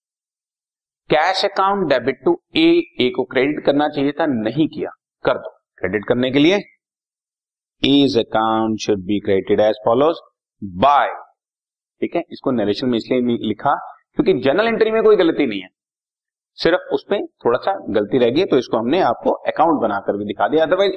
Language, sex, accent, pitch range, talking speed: Hindi, male, native, 110-160 Hz, 170 wpm